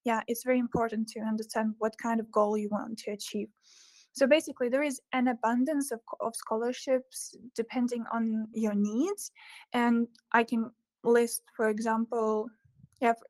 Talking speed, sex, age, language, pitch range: 150 wpm, female, 10-29, English, 225-255 Hz